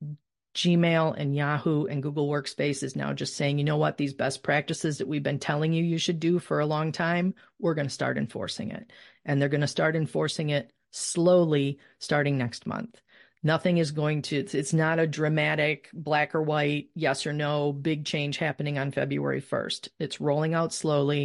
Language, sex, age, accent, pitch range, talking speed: English, female, 40-59, American, 145-175 Hz, 195 wpm